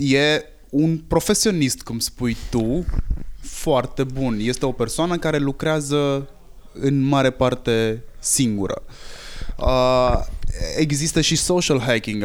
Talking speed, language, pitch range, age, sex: 105 wpm, Romanian, 105-130 Hz, 20-39, male